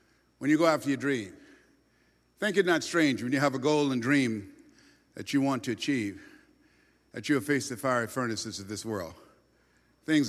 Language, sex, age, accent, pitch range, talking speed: English, male, 50-69, American, 140-225 Hz, 185 wpm